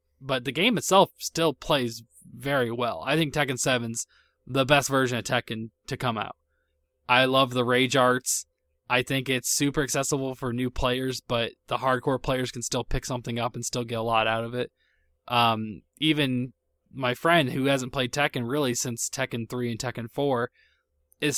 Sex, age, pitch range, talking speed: male, 20-39, 115-135 Hz, 185 wpm